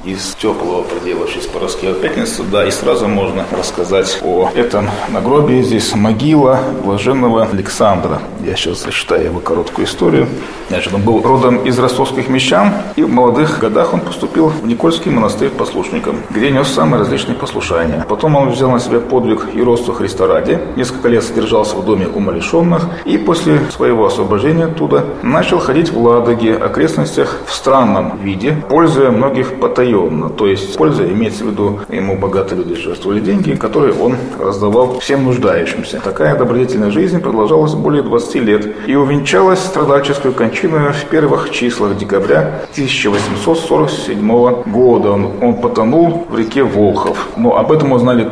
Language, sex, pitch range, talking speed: Russian, male, 100-150 Hz, 155 wpm